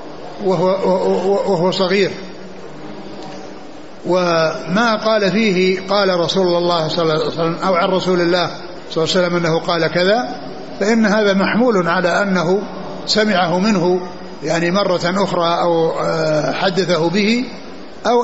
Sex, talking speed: male, 130 wpm